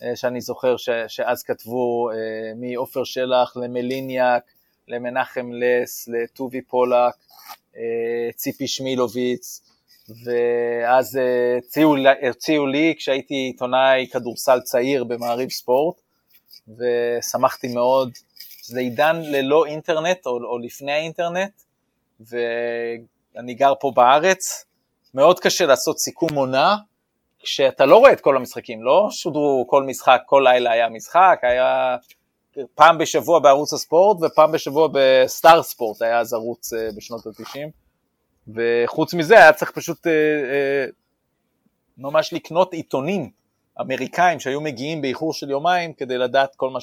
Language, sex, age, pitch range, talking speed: Hebrew, male, 30-49, 120-155 Hz, 120 wpm